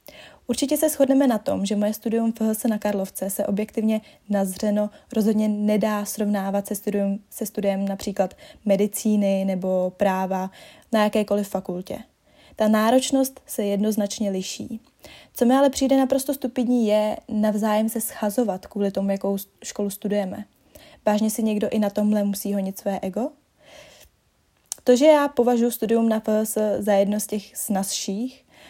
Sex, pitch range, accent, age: female, 205-235 Hz, native, 20-39